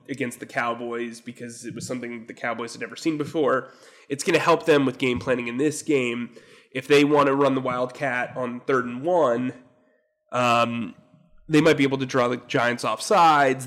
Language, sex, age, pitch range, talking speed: English, male, 20-39, 120-140 Hz, 200 wpm